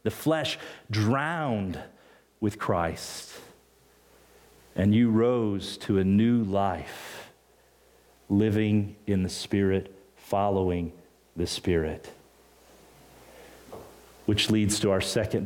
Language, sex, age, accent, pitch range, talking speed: English, male, 40-59, American, 100-155 Hz, 95 wpm